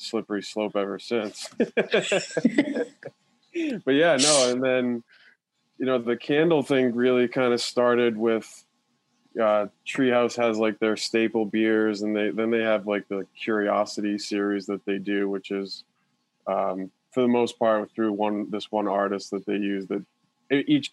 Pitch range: 100-120 Hz